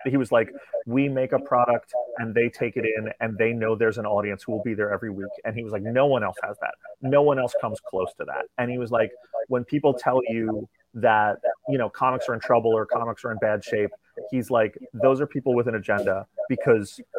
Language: English